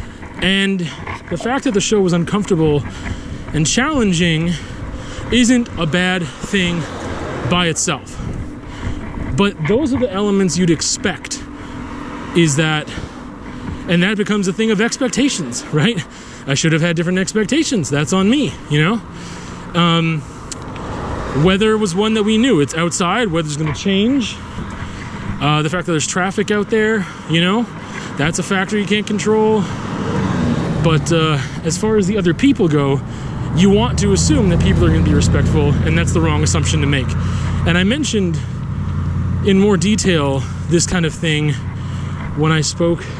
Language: English